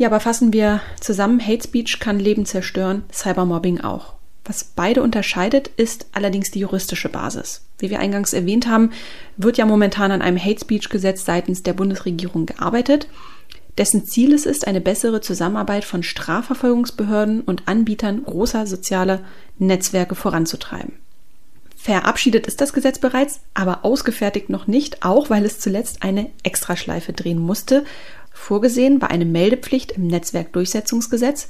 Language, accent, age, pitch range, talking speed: German, German, 30-49, 185-240 Hz, 145 wpm